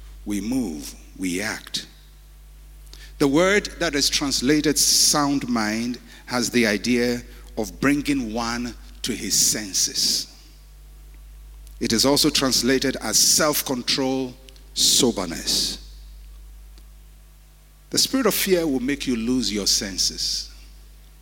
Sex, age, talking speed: male, 50-69, 105 wpm